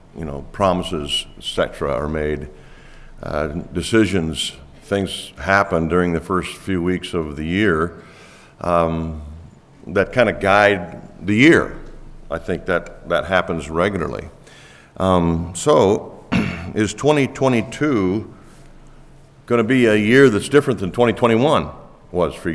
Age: 50-69